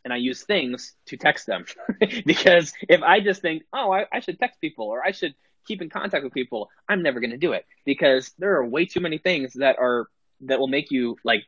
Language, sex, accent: English, male, American